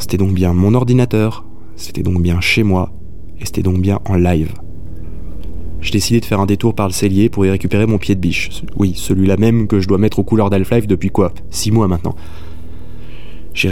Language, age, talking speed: French, 20-39, 210 wpm